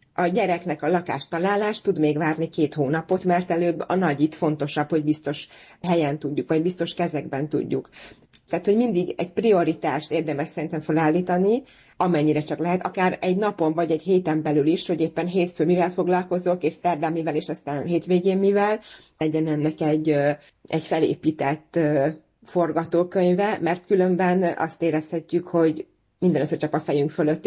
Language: Hungarian